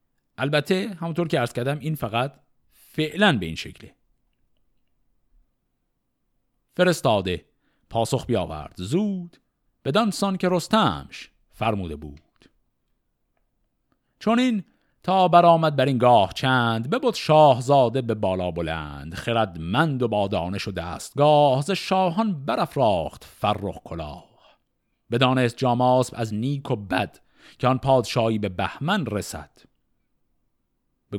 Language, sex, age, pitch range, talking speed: Persian, male, 50-69, 105-170 Hz, 110 wpm